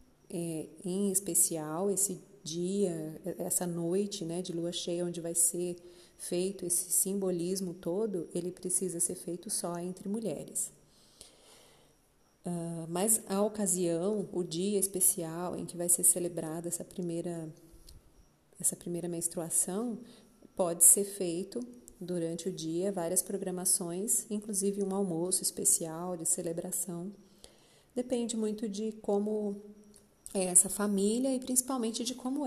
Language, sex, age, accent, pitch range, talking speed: Portuguese, female, 30-49, Brazilian, 175-205 Hz, 120 wpm